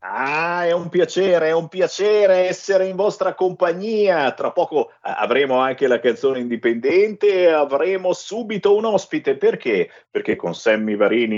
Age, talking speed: 50-69, 150 wpm